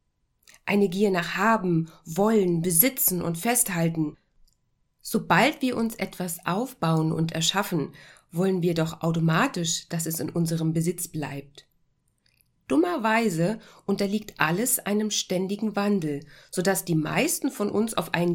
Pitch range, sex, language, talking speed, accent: 160-215 Hz, female, German, 130 wpm, German